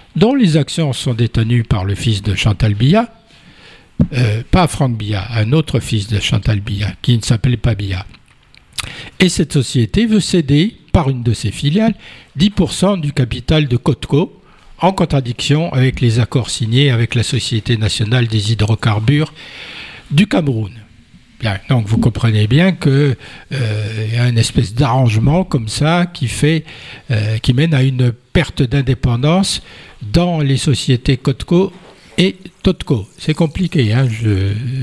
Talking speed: 150 wpm